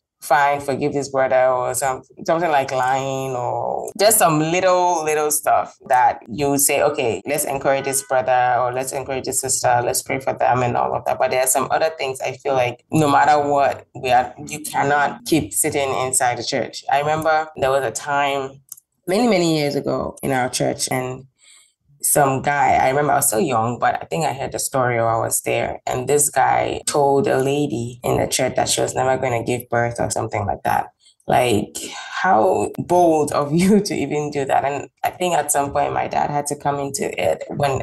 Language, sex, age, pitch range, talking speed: English, female, 20-39, 130-145 Hz, 210 wpm